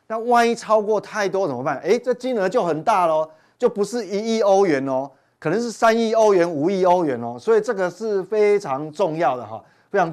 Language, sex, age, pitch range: Chinese, male, 30-49, 145-210 Hz